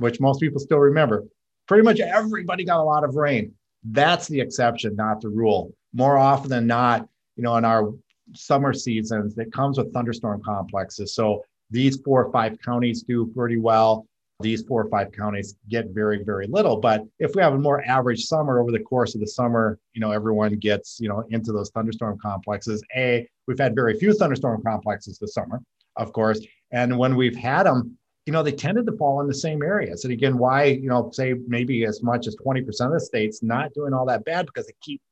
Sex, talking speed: male, 210 wpm